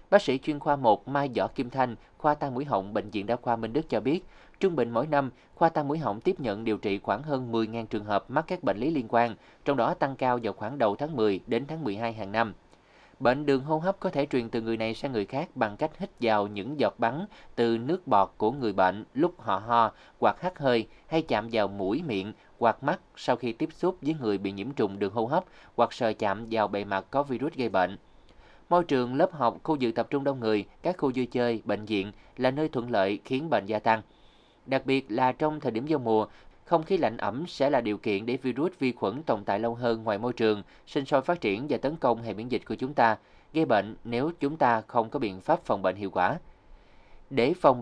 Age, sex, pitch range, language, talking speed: 20-39, male, 110-140 Hz, Vietnamese, 250 wpm